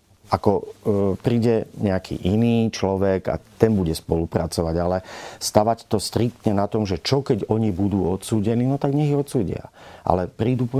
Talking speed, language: 155 wpm, Slovak